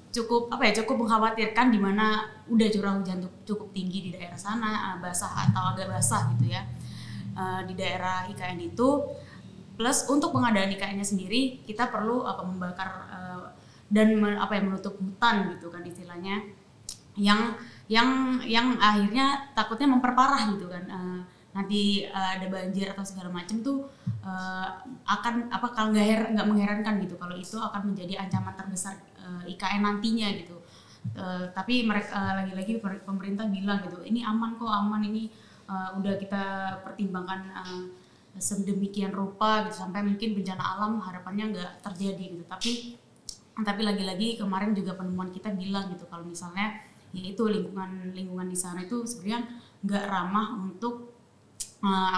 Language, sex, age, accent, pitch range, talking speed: Indonesian, female, 20-39, native, 185-220 Hz, 145 wpm